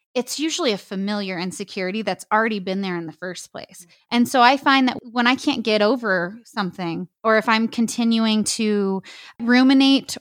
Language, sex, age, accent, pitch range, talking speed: English, female, 20-39, American, 190-240 Hz, 175 wpm